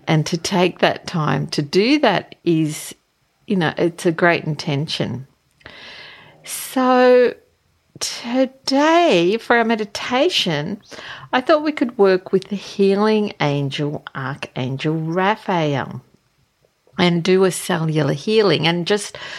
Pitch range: 165-220 Hz